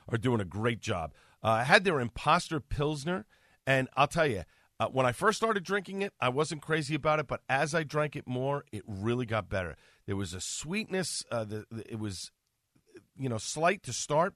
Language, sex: English, male